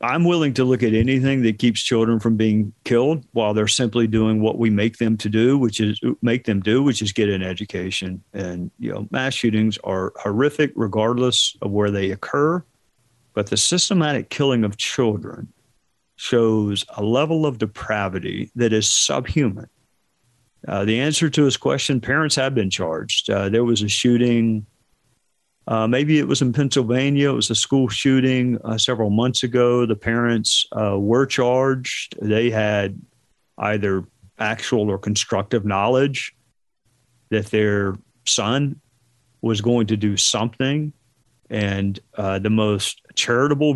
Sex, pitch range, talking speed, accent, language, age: male, 105-130 Hz, 155 wpm, American, English, 50-69